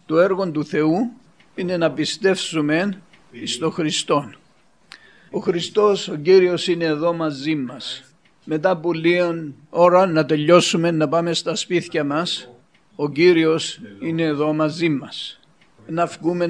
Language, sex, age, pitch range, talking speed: Greek, male, 50-69, 155-185 Hz, 130 wpm